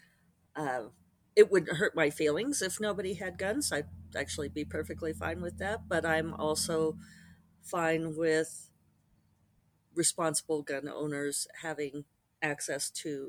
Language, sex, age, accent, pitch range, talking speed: English, female, 50-69, American, 135-190 Hz, 125 wpm